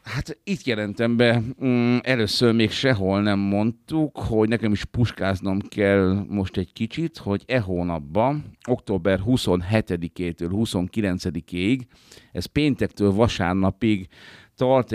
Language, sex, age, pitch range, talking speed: Hungarian, male, 50-69, 95-115 Hz, 110 wpm